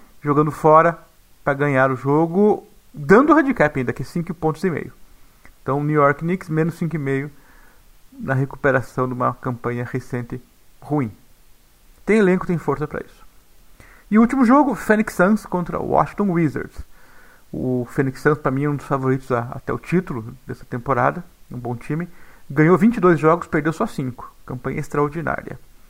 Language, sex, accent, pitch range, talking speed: Portuguese, male, Brazilian, 140-195 Hz, 160 wpm